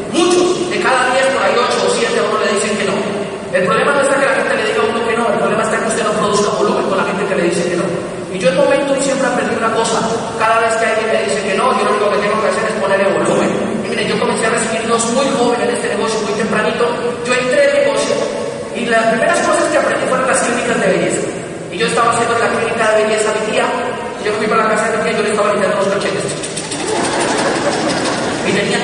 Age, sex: 40-59, male